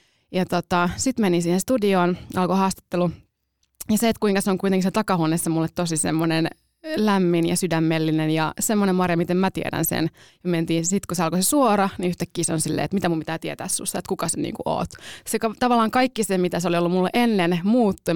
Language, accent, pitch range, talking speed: Finnish, native, 165-200 Hz, 210 wpm